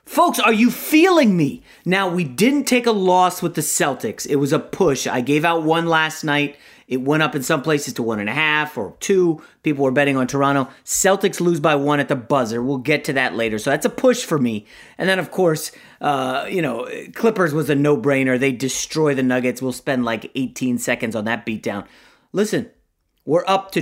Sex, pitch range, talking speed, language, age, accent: male, 130-180 Hz, 220 wpm, English, 30-49, American